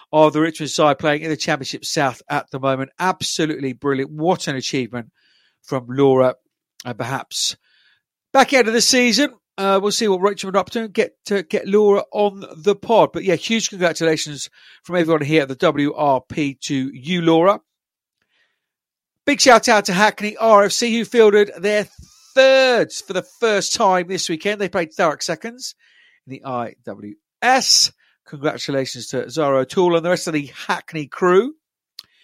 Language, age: English, 50-69